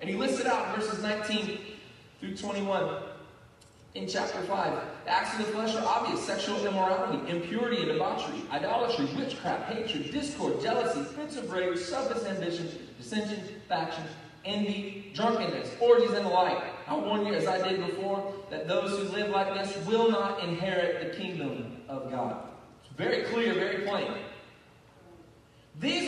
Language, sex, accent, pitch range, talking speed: English, male, American, 190-245 Hz, 155 wpm